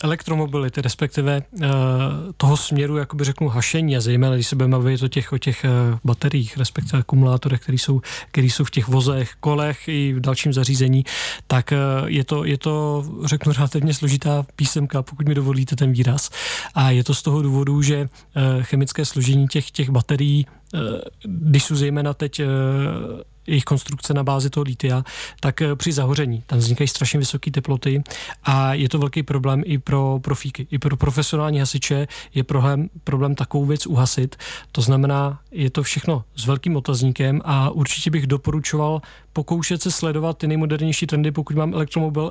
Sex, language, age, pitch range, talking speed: male, Czech, 30-49, 135-150 Hz, 175 wpm